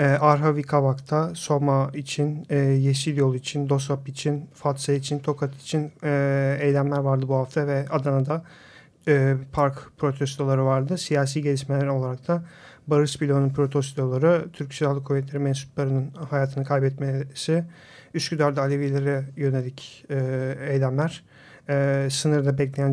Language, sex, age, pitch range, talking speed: Turkish, male, 40-59, 140-155 Hz, 115 wpm